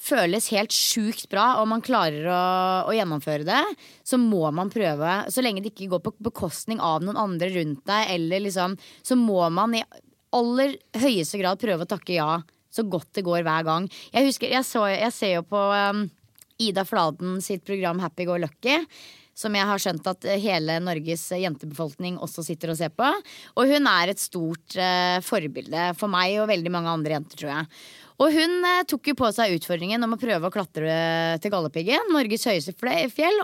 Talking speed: 190 wpm